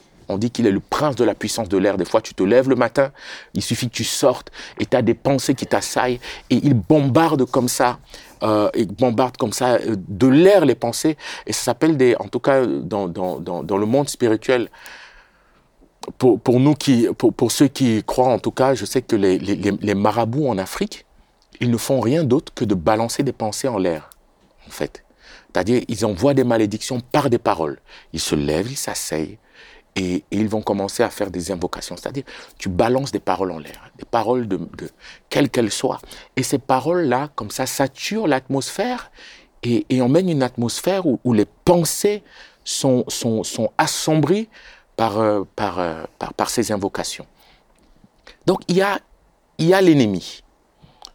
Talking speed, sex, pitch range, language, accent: 185 wpm, male, 110-150 Hz, French, French